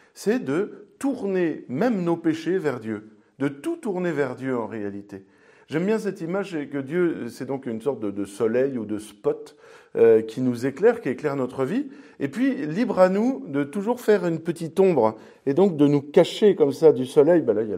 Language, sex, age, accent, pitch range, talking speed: French, male, 50-69, French, 130-200 Hz, 210 wpm